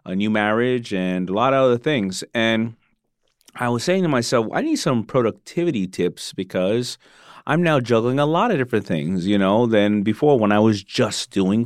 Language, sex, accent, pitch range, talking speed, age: English, male, American, 95-135 Hz, 195 wpm, 30-49